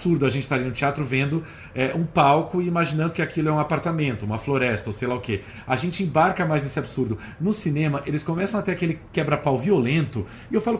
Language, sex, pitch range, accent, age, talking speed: Portuguese, male, 130-180 Hz, Brazilian, 40-59, 245 wpm